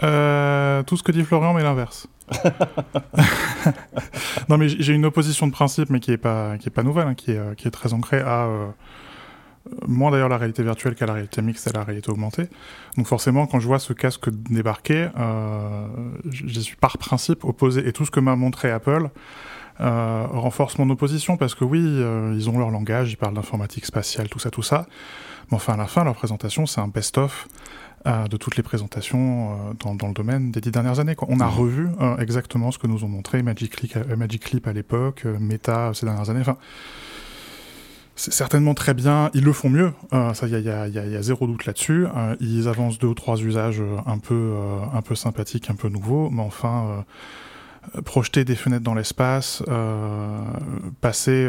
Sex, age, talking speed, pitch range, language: male, 20-39, 195 wpm, 110-135 Hz, French